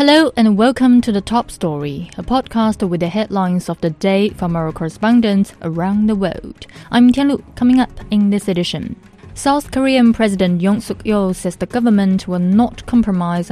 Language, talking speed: English, 175 wpm